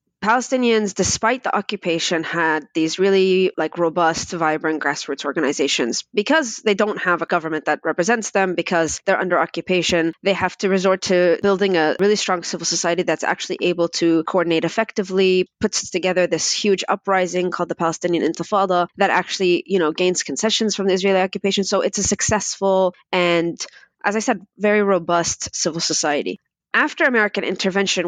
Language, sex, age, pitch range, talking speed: English, female, 20-39, 175-210 Hz, 160 wpm